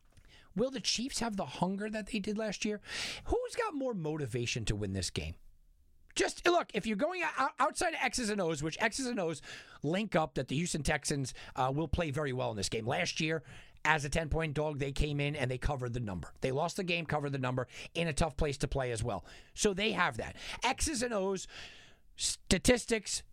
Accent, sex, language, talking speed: American, male, English, 215 wpm